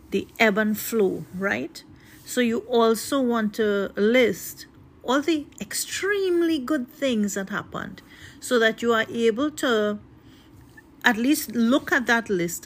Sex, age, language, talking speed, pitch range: female, 40-59, English, 140 wpm, 190-245 Hz